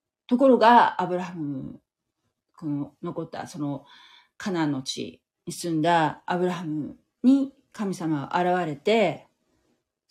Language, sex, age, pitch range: Japanese, female, 40-59, 150-220 Hz